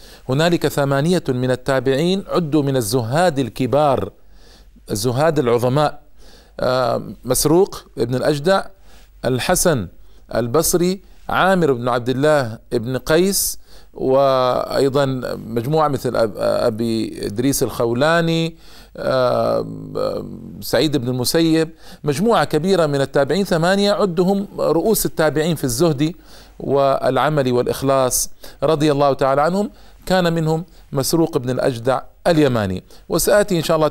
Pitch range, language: 125-170 Hz, Arabic